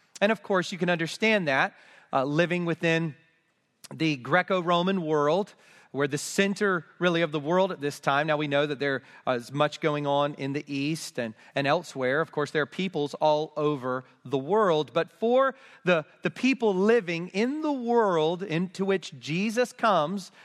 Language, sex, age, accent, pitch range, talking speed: English, male, 40-59, American, 145-195 Hz, 175 wpm